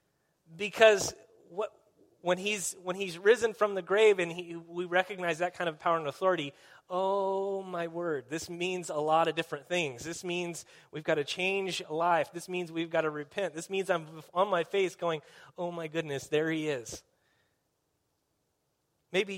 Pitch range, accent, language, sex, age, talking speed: 145-170 Hz, American, English, male, 30-49, 175 wpm